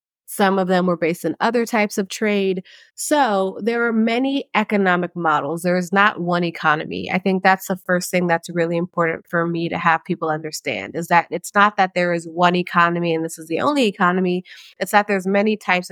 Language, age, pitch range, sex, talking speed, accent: English, 30-49, 170-205 Hz, female, 210 wpm, American